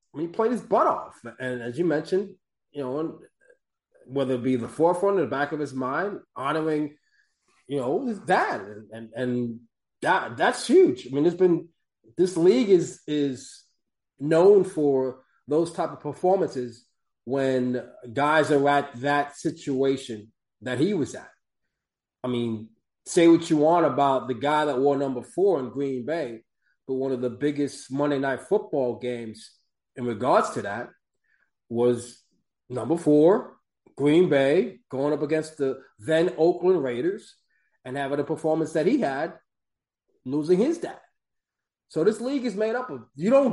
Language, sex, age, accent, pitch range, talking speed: English, male, 20-39, American, 130-175 Hz, 165 wpm